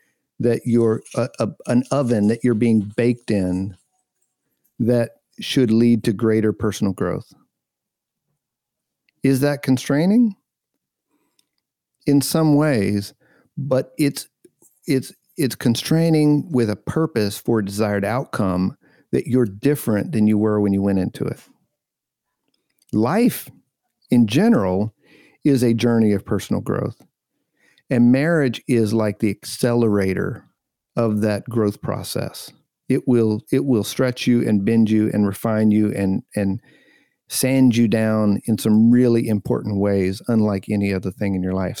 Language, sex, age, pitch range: English, male, 50-69, 105-130 Hz